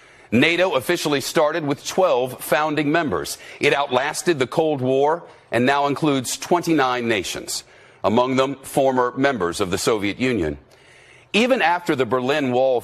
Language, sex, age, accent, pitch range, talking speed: English, male, 50-69, American, 125-155 Hz, 140 wpm